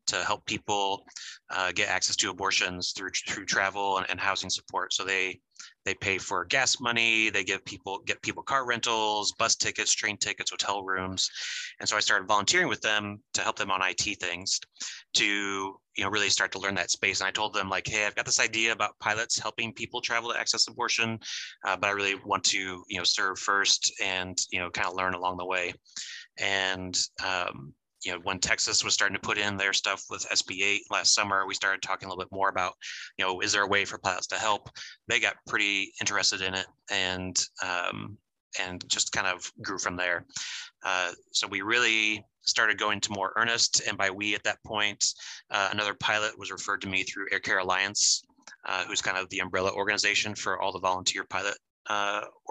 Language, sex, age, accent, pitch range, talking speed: English, male, 30-49, American, 95-110 Hz, 210 wpm